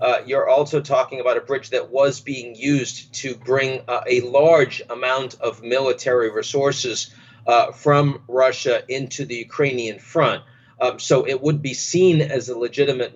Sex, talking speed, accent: male, 165 wpm, American